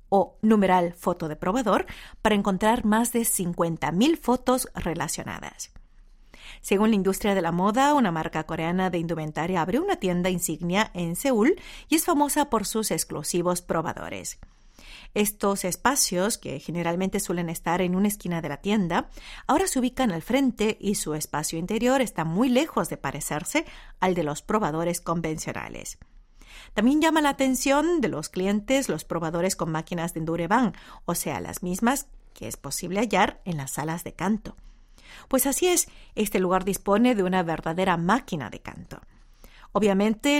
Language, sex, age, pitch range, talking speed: Spanish, female, 40-59, 165-230 Hz, 155 wpm